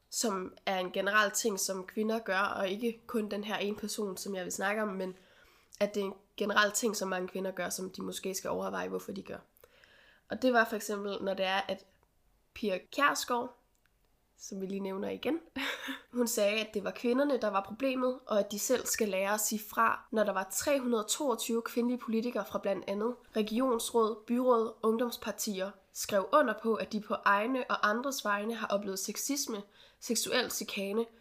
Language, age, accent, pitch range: Danish, 20-39, native, 195-240 Hz